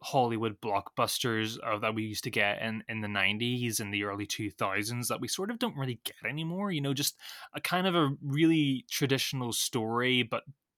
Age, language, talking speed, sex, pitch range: 20-39, English, 195 wpm, male, 110-140 Hz